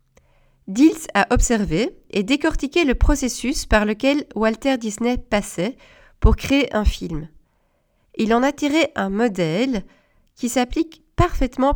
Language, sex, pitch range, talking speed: French, female, 210-270 Hz, 130 wpm